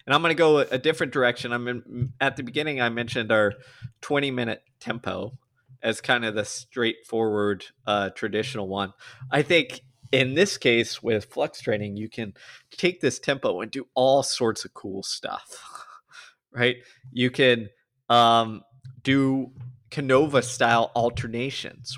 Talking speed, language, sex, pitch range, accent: 145 wpm, English, male, 115-135 Hz, American